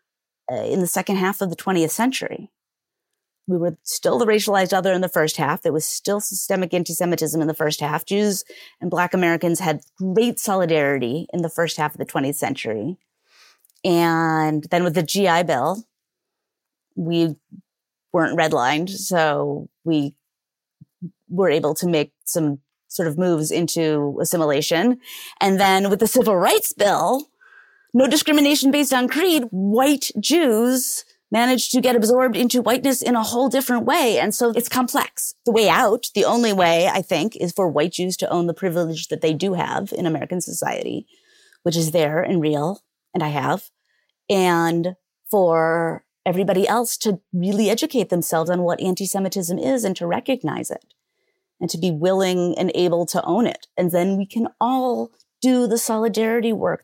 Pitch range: 165-235 Hz